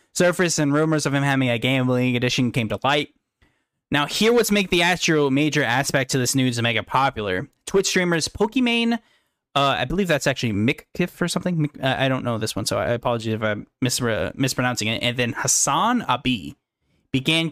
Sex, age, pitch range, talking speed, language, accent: male, 10-29, 120-160 Hz, 195 wpm, English, American